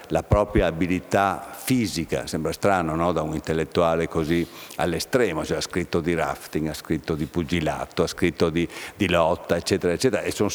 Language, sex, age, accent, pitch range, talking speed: Italian, male, 60-79, native, 80-100 Hz, 170 wpm